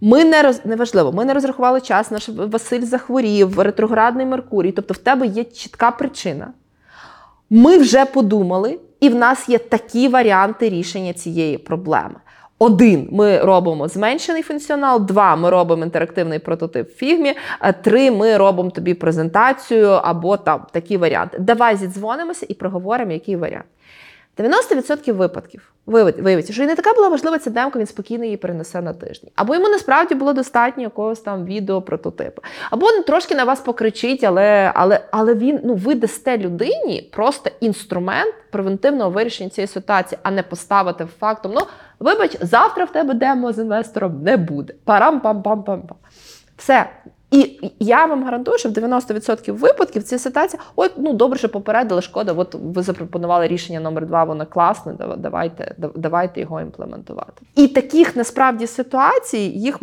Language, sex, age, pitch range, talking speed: Ukrainian, female, 20-39, 190-260 Hz, 150 wpm